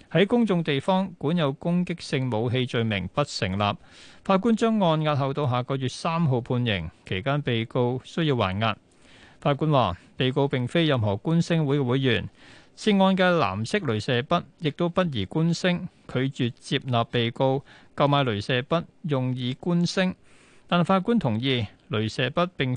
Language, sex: Chinese, male